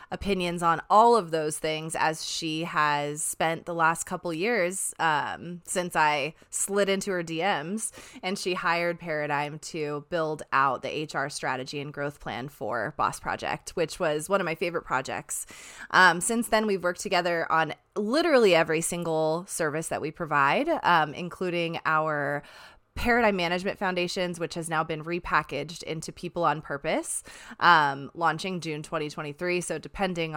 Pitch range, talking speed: 150-180 Hz, 155 wpm